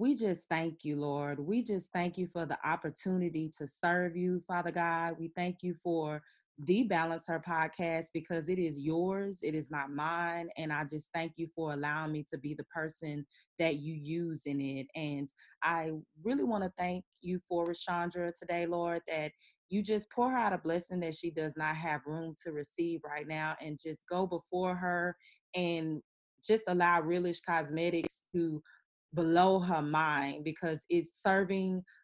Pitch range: 155-185 Hz